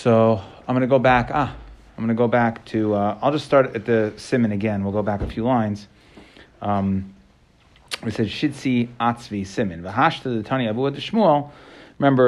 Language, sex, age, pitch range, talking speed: English, male, 30-49, 110-130 Hz, 140 wpm